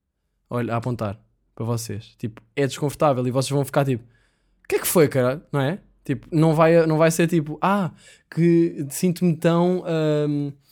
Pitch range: 125-155 Hz